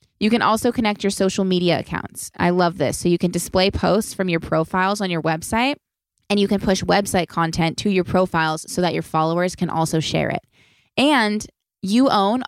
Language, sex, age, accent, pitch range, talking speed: English, female, 20-39, American, 165-200 Hz, 200 wpm